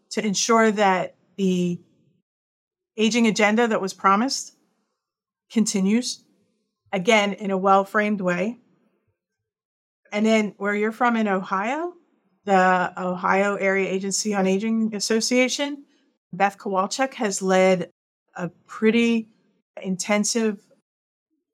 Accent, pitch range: American, 185-225 Hz